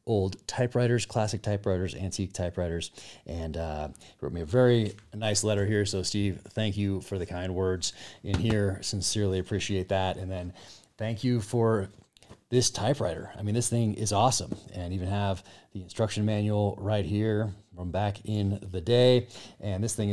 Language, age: English, 30-49